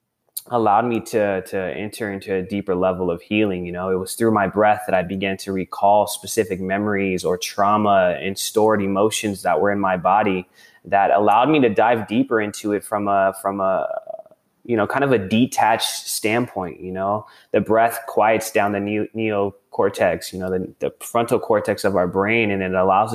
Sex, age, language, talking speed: male, 20-39, English, 190 wpm